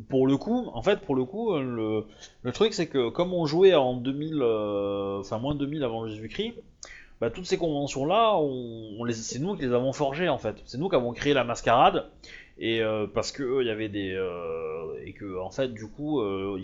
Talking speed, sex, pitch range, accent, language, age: 230 wpm, male, 105-145 Hz, French, French, 20-39